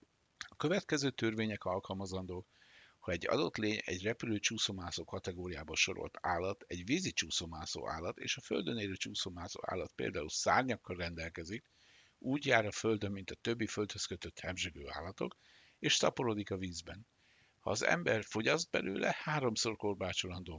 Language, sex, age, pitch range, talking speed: Hungarian, male, 60-79, 90-110 Hz, 145 wpm